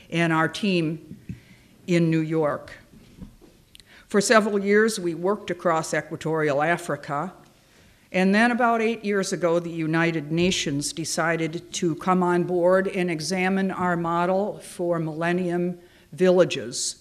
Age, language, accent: 50-69, English, American